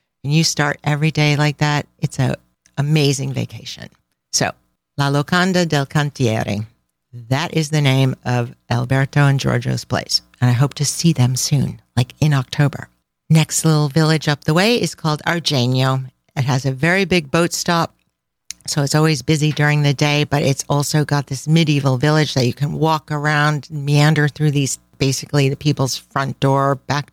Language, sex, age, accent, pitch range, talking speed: English, female, 50-69, American, 130-155 Hz, 175 wpm